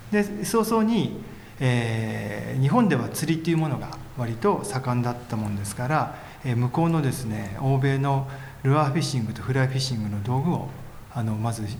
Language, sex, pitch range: Japanese, male, 115-150 Hz